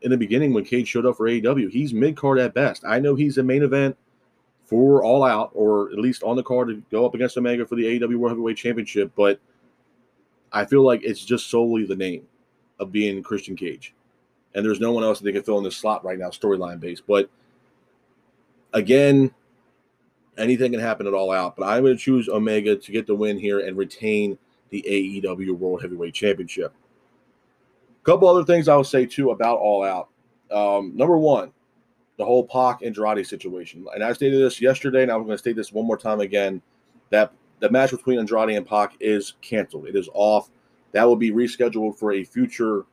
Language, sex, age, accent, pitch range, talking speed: English, male, 30-49, American, 100-125 Hz, 200 wpm